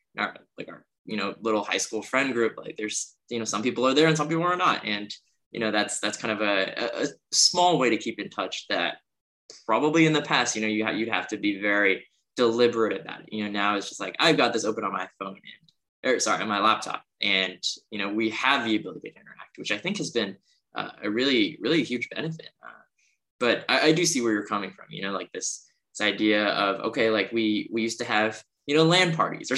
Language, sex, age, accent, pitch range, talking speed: English, male, 10-29, American, 105-120 Hz, 250 wpm